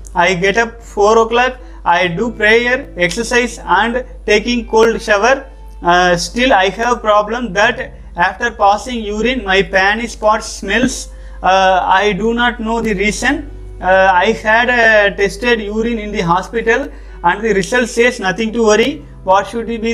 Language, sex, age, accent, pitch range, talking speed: Tamil, male, 30-49, native, 190-230 Hz, 155 wpm